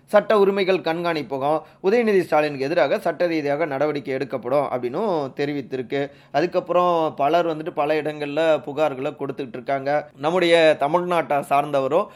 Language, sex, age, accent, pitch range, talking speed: Tamil, male, 30-49, native, 135-175 Hz, 120 wpm